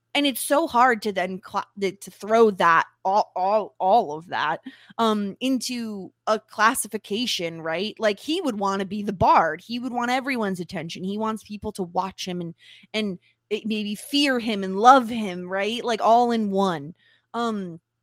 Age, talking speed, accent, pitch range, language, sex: 20-39, 180 wpm, American, 180-220 Hz, English, female